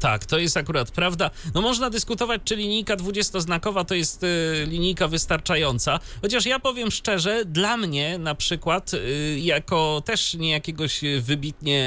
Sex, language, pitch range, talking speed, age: male, Polish, 140-185 Hz, 140 wpm, 30-49